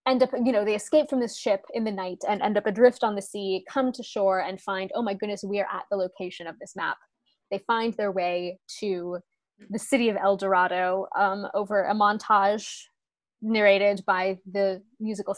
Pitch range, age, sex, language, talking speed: 195-235 Hz, 20-39, female, English, 205 wpm